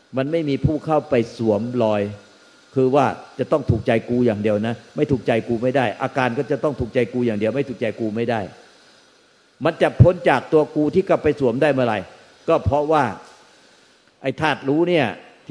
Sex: male